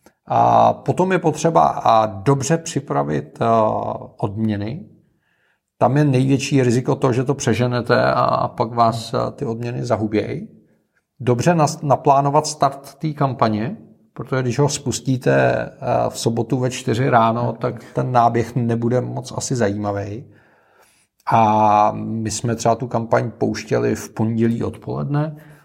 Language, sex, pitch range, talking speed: Czech, male, 110-140 Hz, 120 wpm